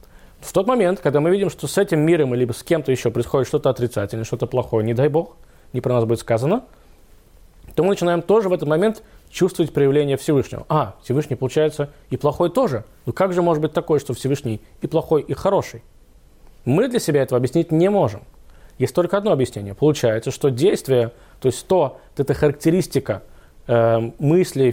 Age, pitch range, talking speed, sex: 20-39, 120-160 Hz, 185 wpm, male